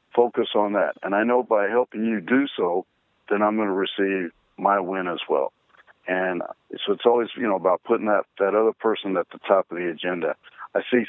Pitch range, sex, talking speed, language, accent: 95-115 Hz, male, 215 wpm, English, American